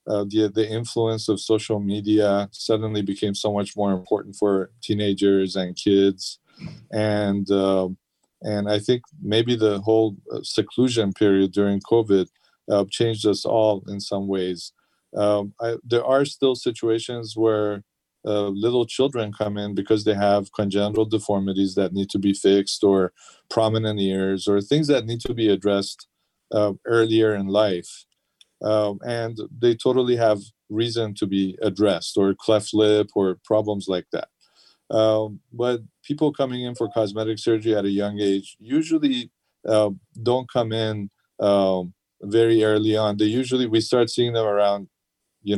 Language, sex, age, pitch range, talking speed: English, male, 40-59, 100-115 Hz, 155 wpm